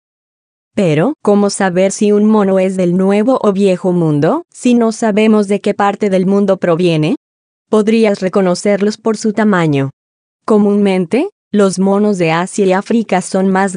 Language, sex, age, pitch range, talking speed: Spanish, female, 20-39, 180-215 Hz, 155 wpm